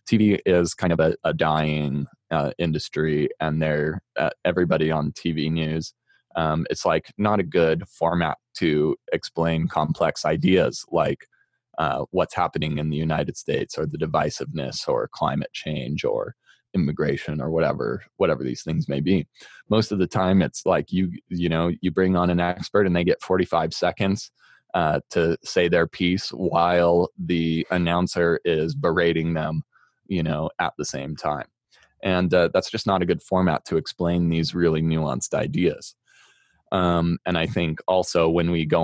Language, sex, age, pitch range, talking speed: English, male, 20-39, 80-95 Hz, 165 wpm